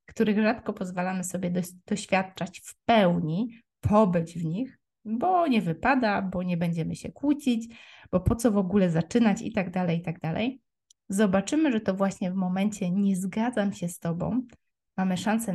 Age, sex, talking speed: 20-39, female, 165 wpm